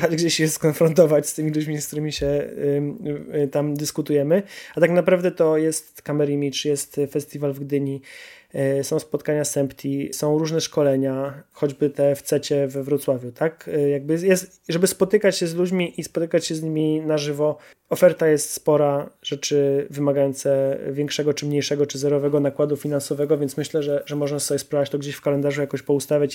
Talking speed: 180 wpm